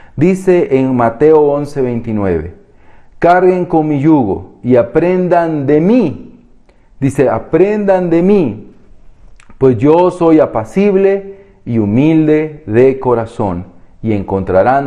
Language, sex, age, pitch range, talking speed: Spanish, male, 40-59, 115-165 Hz, 105 wpm